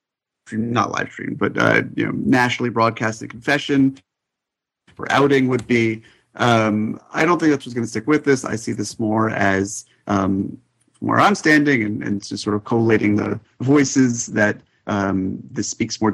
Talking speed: 180 wpm